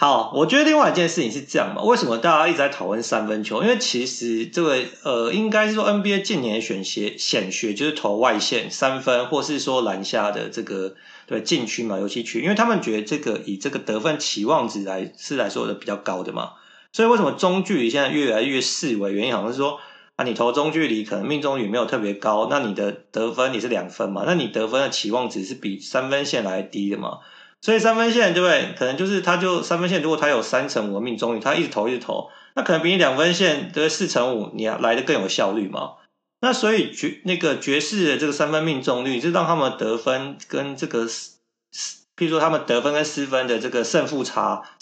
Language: Chinese